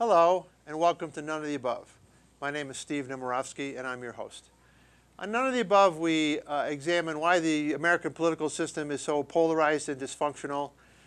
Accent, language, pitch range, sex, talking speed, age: American, English, 140-165 Hz, male, 190 wpm, 50-69